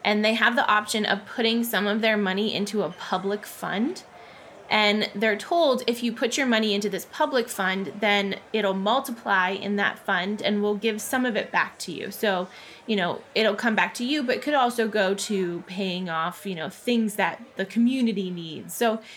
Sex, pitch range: female, 200-240 Hz